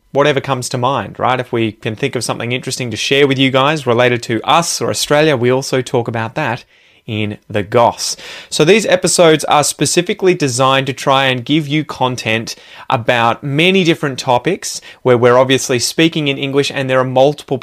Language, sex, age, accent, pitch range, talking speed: English, male, 20-39, Australian, 120-150 Hz, 190 wpm